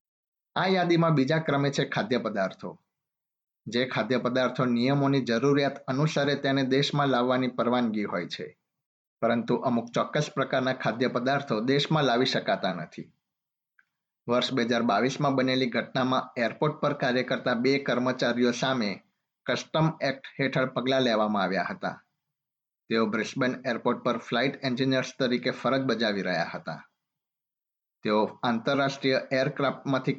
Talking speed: 120 wpm